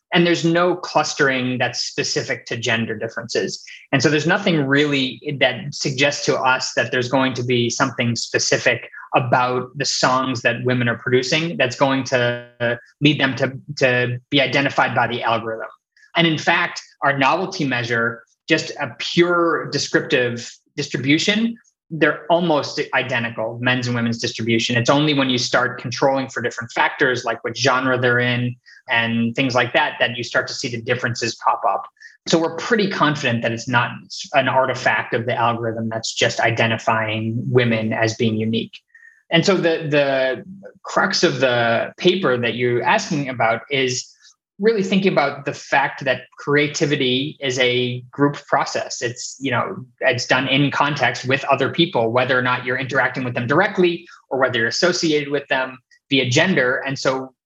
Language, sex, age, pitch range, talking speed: English, male, 20-39, 120-155 Hz, 165 wpm